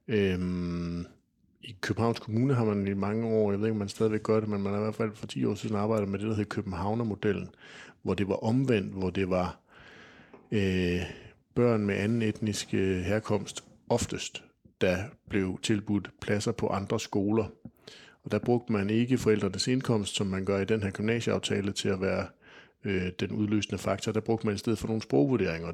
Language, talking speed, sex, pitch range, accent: Danish, 190 wpm, male, 95-110 Hz, native